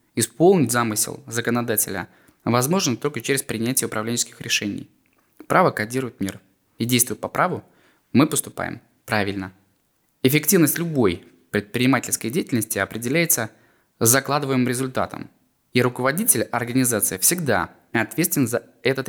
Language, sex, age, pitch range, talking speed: Russian, male, 20-39, 110-140 Hz, 105 wpm